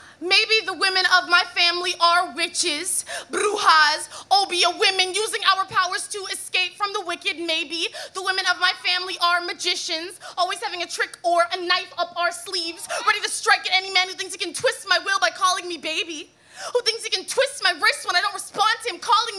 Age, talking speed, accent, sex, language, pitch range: 20-39, 210 wpm, American, female, English, 345-395 Hz